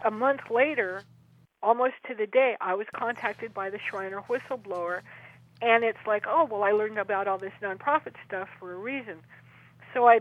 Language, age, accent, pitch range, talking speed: English, 50-69, American, 200-235 Hz, 180 wpm